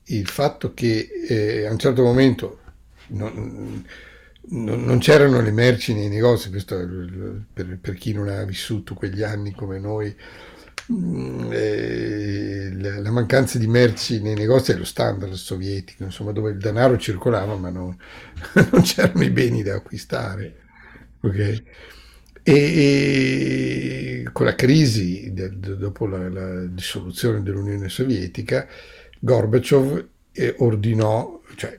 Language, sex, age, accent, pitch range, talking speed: Italian, male, 60-79, native, 95-120 Hz, 130 wpm